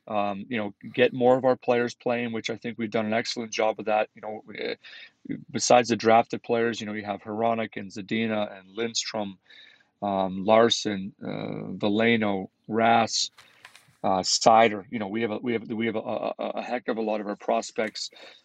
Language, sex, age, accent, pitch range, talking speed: English, male, 40-59, American, 105-120 Hz, 195 wpm